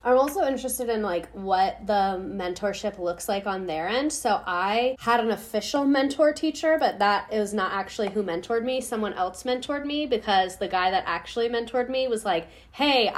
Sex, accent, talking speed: female, American, 190 wpm